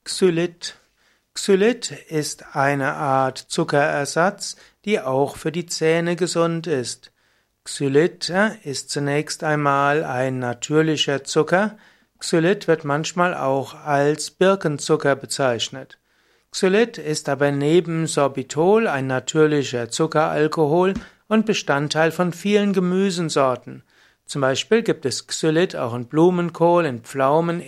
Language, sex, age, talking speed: German, male, 60-79, 110 wpm